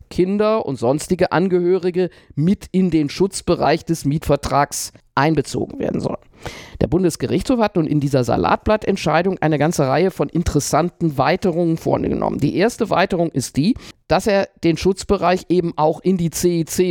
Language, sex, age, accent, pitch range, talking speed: German, male, 50-69, German, 140-185 Hz, 145 wpm